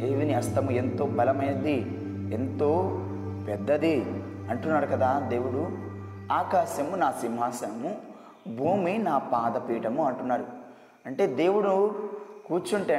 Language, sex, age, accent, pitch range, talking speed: Telugu, male, 20-39, native, 130-190 Hz, 90 wpm